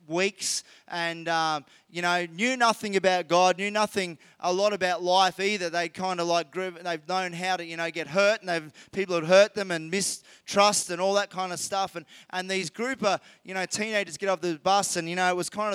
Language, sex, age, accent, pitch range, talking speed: English, male, 20-39, Australian, 175-210 Hz, 225 wpm